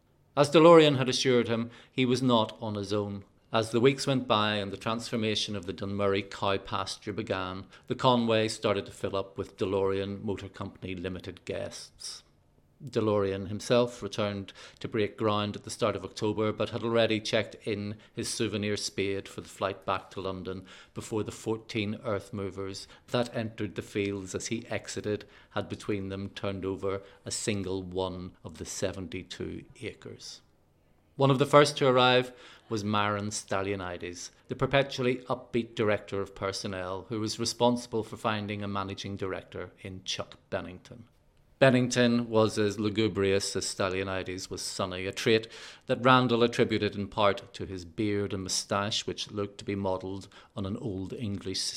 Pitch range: 95-115 Hz